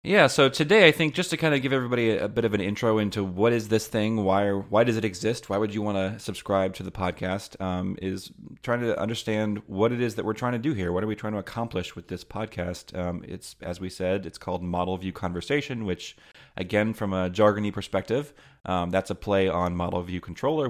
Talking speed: 240 wpm